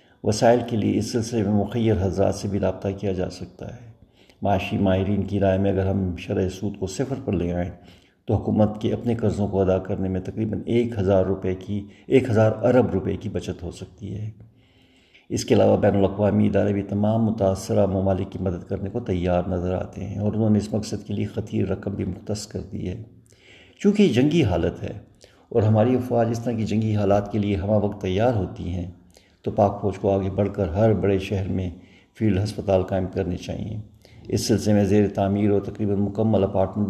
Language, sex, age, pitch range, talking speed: Urdu, male, 50-69, 95-110 Hz, 205 wpm